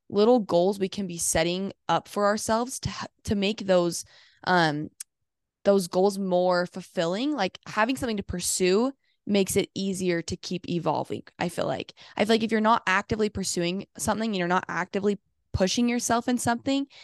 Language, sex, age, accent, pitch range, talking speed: English, female, 10-29, American, 175-205 Hz, 170 wpm